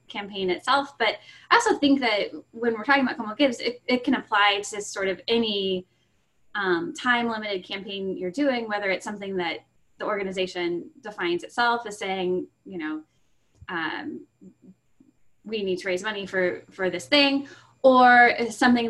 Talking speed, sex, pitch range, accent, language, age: 160 wpm, female, 185-235 Hz, American, English, 10-29